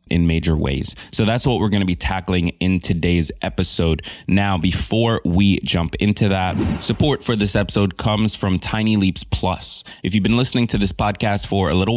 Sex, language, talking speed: male, English, 195 wpm